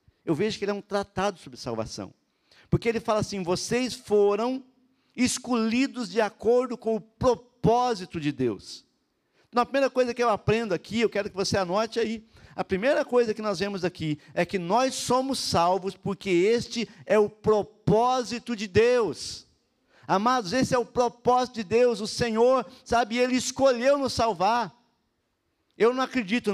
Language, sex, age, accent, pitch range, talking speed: Portuguese, male, 50-69, Brazilian, 190-240 Hz, 165 wpm